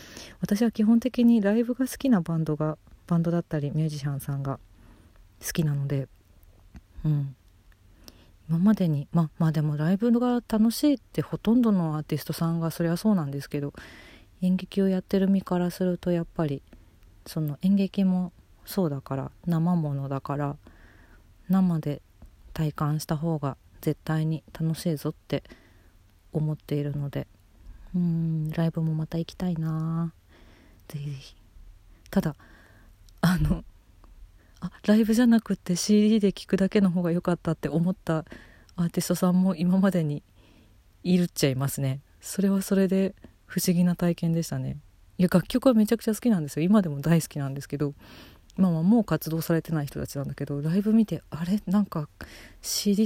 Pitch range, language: 135-185 Hz, Japanese